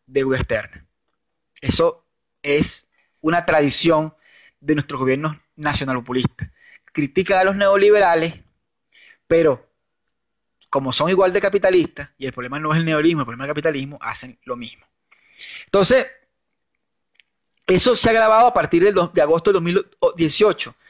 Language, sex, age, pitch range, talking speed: Spanish, male, 30-49, 155-200 Hz, 135 wpm